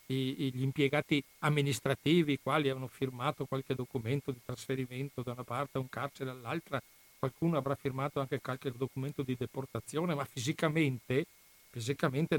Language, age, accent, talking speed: Italian, 50-69, native, 135 wpm